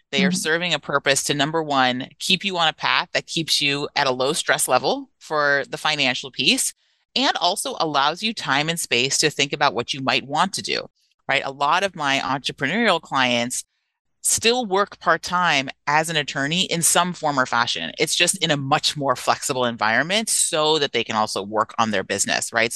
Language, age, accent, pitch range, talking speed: English, 30-49, American, 125-175 Hz, 205 wpm